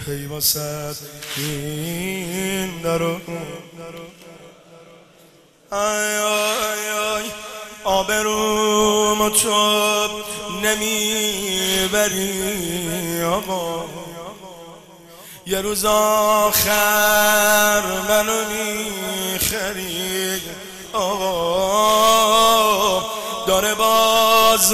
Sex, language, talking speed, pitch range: male, Persian, 45 wpm, 170-215 Hz